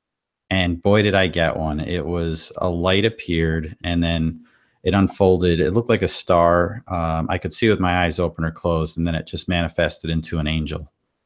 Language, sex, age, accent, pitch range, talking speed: English, male, 40-59, American, 80-95 Hz, 205 wpm